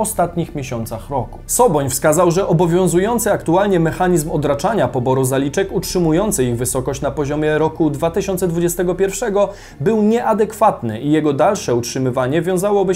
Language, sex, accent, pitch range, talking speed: Polish, male, native, 145-195 Hz, 120 wpm